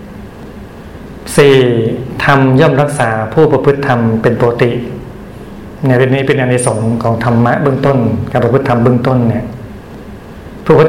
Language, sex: Thai, male